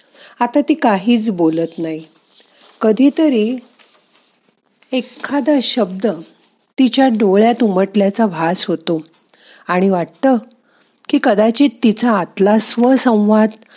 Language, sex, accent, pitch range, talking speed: Marathi, female, native, 195-250 Hz, 85 wpm